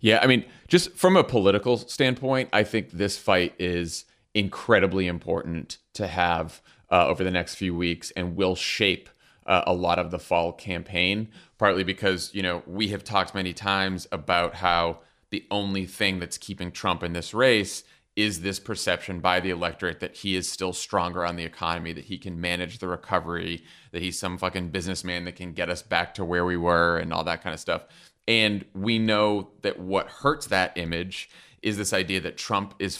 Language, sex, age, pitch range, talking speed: English, male, 30-49, 90-110 Hz, 195 wpm